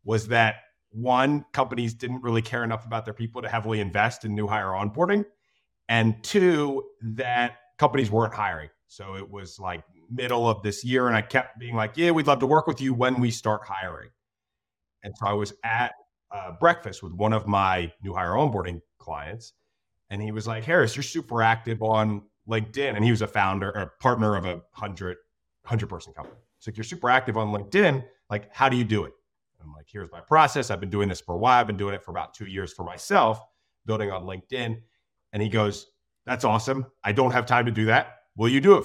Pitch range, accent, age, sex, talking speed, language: 105-130 Hz, American, 30-49, male, 220 wpm, English